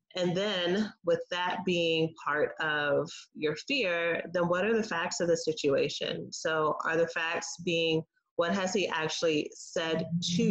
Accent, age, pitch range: American, 30-49, 155-175 Hz